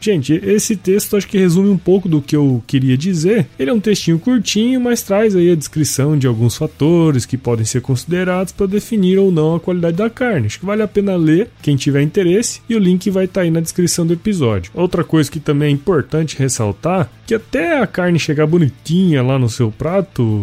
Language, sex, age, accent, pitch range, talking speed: Portuguese, male, 20-39, Brazilian, 125-185 Hz, 215 wpm